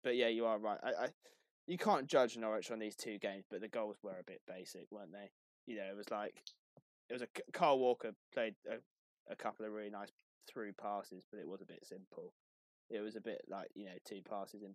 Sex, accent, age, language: male, British, 20-39, English